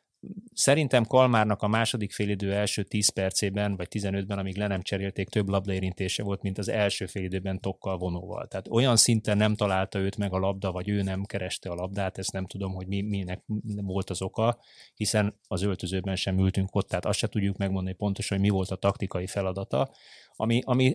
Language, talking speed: Hungarian, 195 wpm